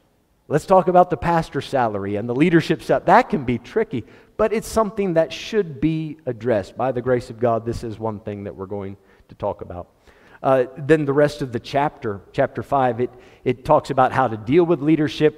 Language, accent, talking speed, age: English, American, 210 wpm, 50-69